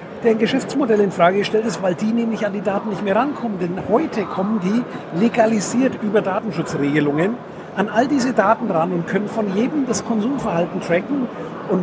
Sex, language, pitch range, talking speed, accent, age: male, German, 180-225 Hz, 185 wpm, German, 50-69